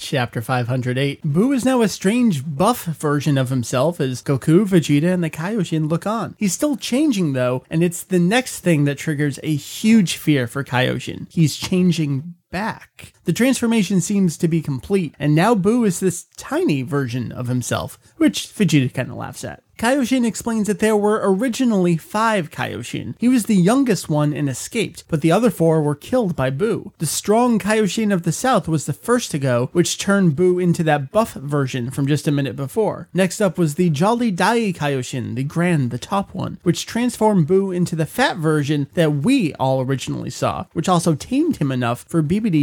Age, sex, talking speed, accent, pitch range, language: 30-49, male, 190 wpm, American, 145-200 Hz, English